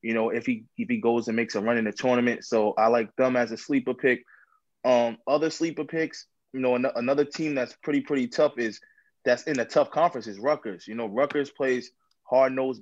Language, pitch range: English, 120-145 Hz